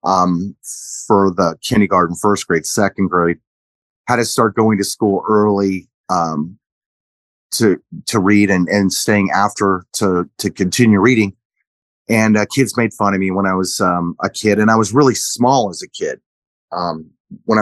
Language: English